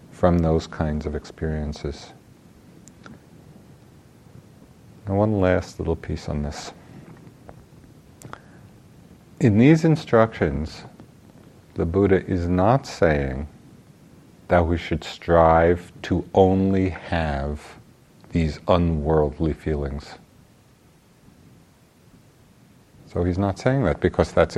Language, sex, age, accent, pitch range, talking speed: English, male, 50-69, American, 80-105 Hz, 90 wpm